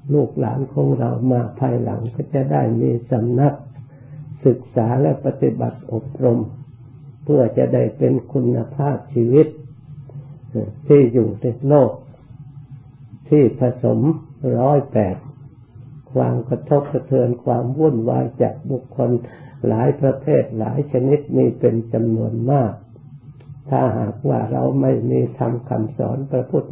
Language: Thai